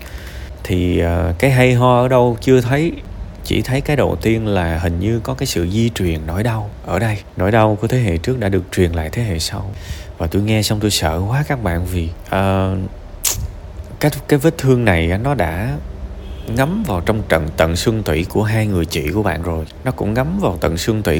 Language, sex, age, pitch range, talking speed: Vietnamese, male, 20-39, 85-115 Hz, 220 wpm